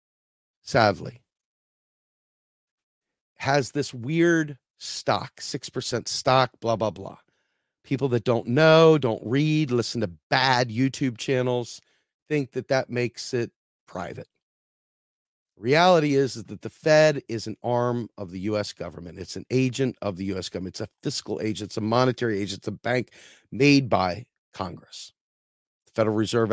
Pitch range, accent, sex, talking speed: 105-135 Hz, American, male, 145 wpm